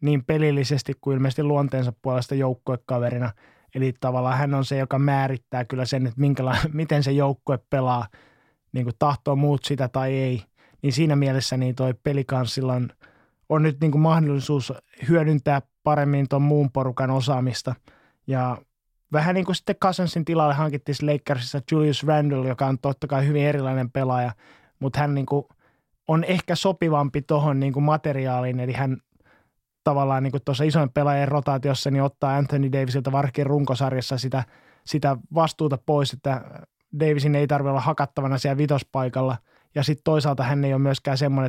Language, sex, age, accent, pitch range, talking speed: Finnish, male, 20-39, native, 130-145 Hz, 140 wpm